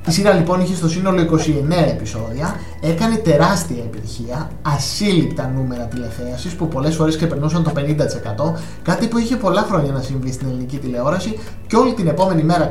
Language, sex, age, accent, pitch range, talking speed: Greek, male, 20-39, native, 135-180 Hz, 165 wpm